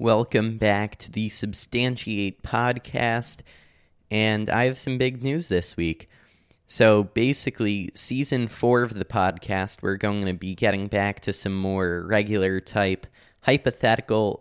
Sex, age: male, 20-39